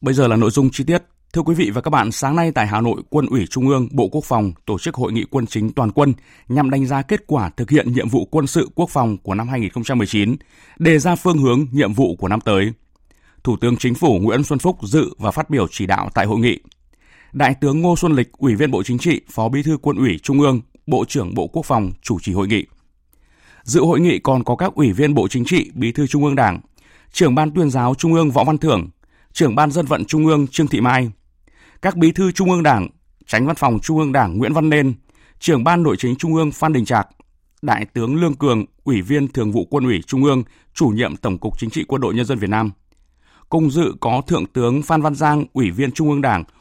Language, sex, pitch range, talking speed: Vietnamese, male, 110-150 Hz, 250 wpm